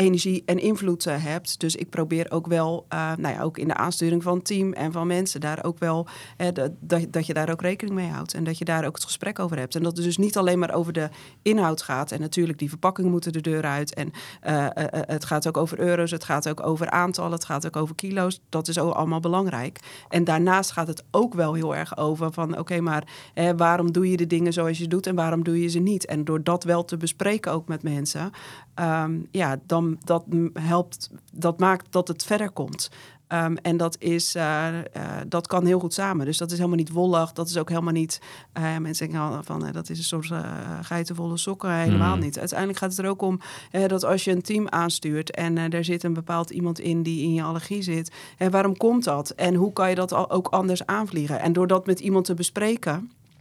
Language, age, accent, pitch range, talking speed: Dutch, 30-49, Dutch, 160-180 Hz, 240 wpm